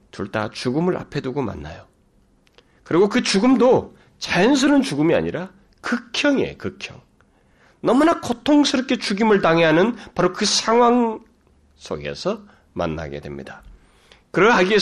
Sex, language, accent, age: male, Korean, native, 40-59